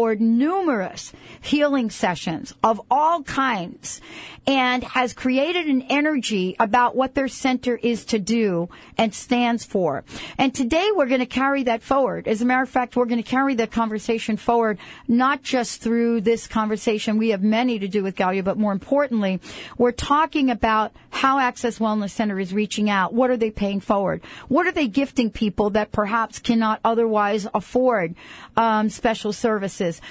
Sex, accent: female, American